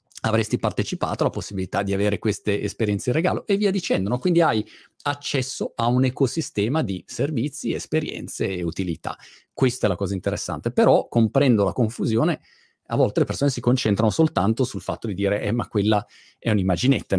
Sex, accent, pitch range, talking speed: male, native, 100-130 Hz, 175 wpm